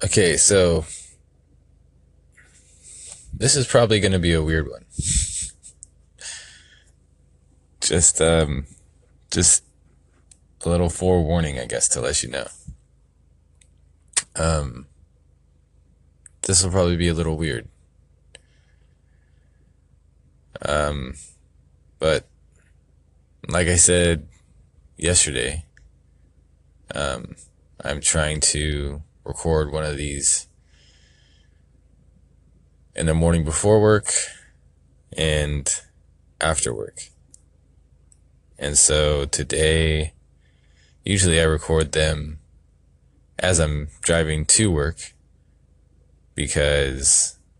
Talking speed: 85 wpm